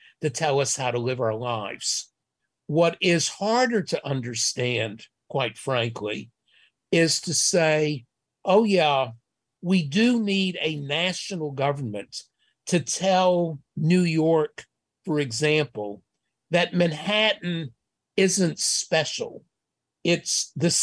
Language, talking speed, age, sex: English, 110 wpm, 50-69, male